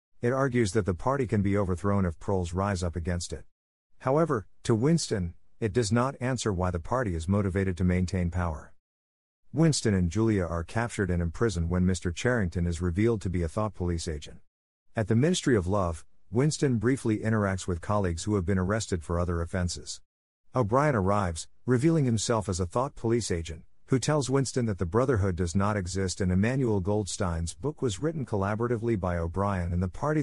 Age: 50-69